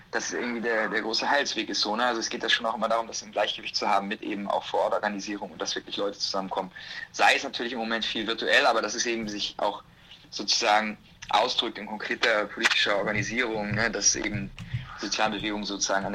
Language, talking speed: German, 220 wpm